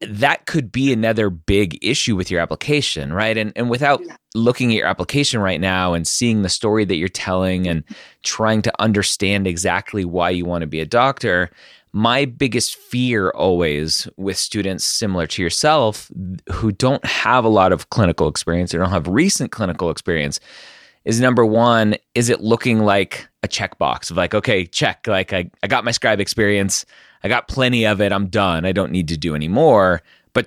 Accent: American